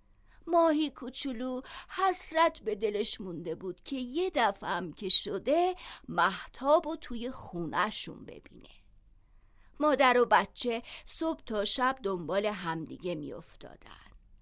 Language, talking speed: Persian, 110 wpm